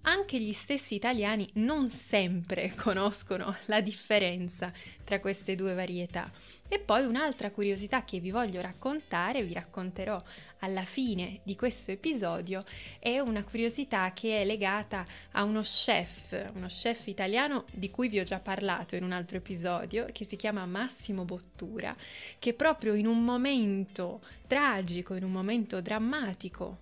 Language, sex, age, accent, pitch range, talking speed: Italian, female, 20-39, native, 185-230 Hz, 145 wpm